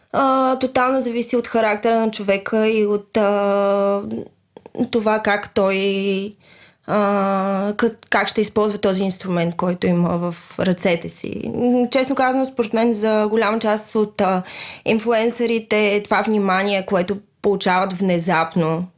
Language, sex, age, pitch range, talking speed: Bulgarian, female, 20-39, 180-220 Hz, 125 wpm